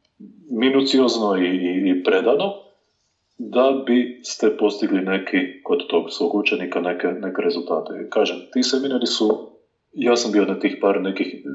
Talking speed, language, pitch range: 135 wpm, Croatian, 110-145 Hz